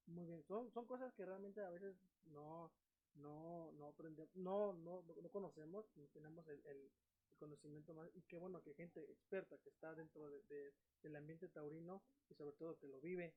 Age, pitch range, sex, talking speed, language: 30-49, 150-190 Hz, male, 195 wpm, Spanish